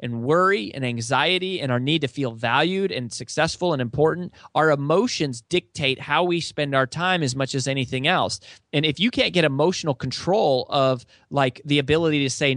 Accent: American